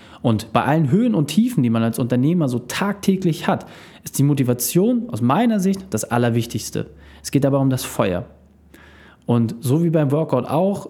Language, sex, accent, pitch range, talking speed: German, male, German, 130-180 Hz, 180 wpm